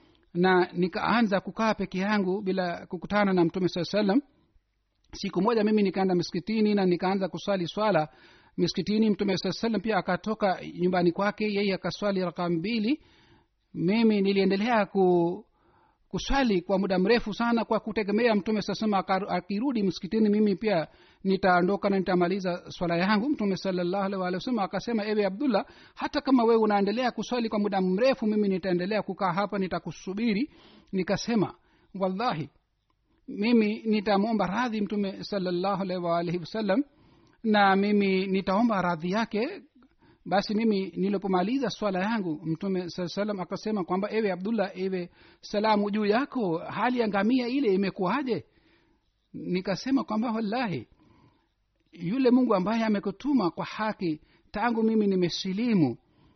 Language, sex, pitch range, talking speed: Swahili, male, 185-220 Hz, 125 wpm